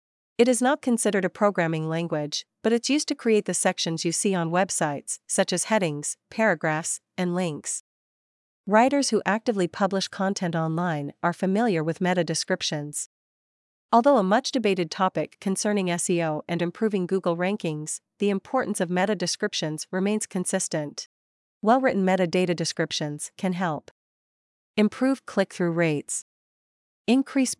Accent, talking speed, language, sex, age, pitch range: American, 135 wpm, English, female, 40-59, 170-210 Hz